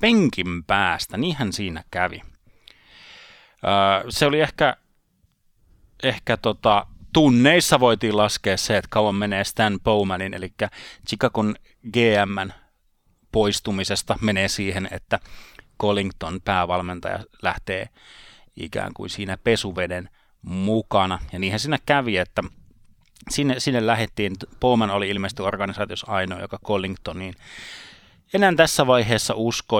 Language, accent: Finnish, native